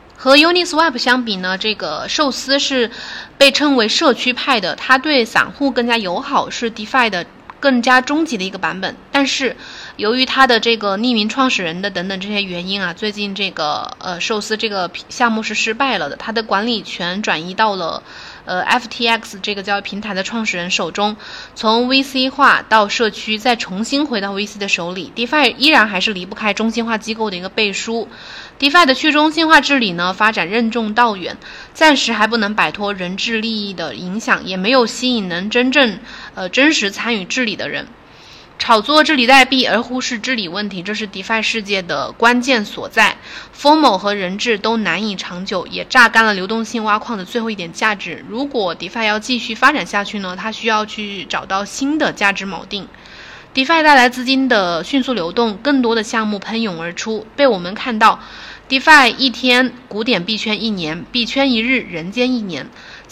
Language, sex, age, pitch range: Chinese, female, 20-39, 200-255 Hz